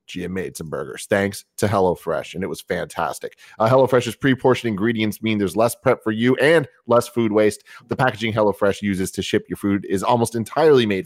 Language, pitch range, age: English, 100-130 Hz, 30-49